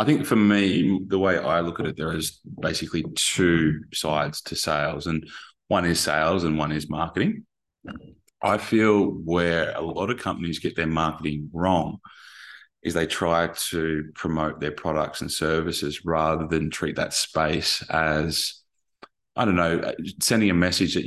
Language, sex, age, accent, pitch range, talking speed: English, male, 20-39, Australian, 80-90 Hz, 165 wpm